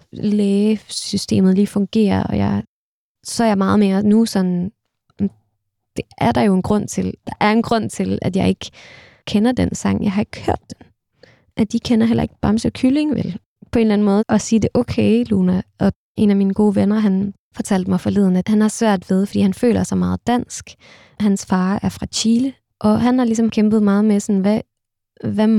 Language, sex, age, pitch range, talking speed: Danish, female, 20-39, 185-220 Hz, 210 wpm